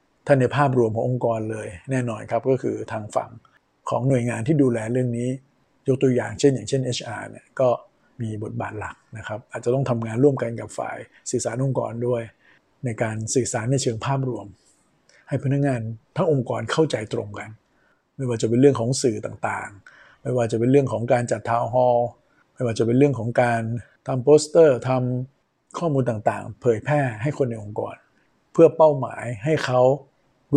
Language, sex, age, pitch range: Thai, male, 60-79, 115-135 Hz